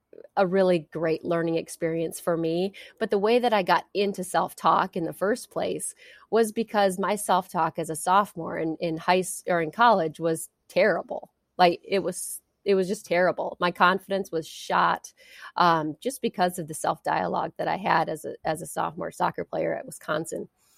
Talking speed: 180 wpm